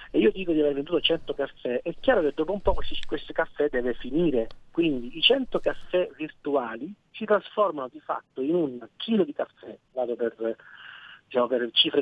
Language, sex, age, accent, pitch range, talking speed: Italian, male, 50-69, native, 145-205 Hz, 180 wpm